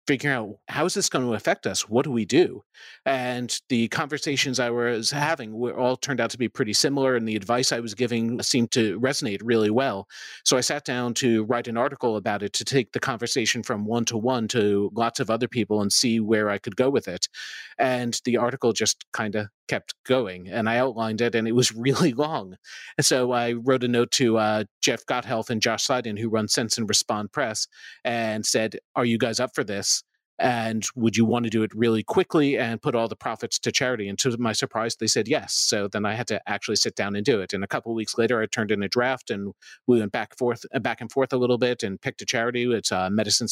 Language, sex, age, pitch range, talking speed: English, male, 40-59, 110-125 Hz, 245 wpm